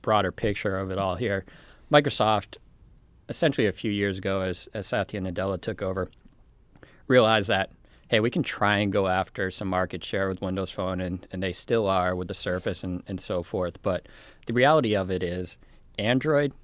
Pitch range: 95-110 Hz